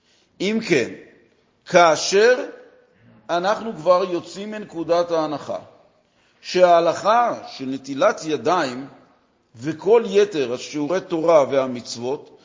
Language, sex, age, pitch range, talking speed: Hebrew, male, 50-69, 170-225 Hz, 80 wpm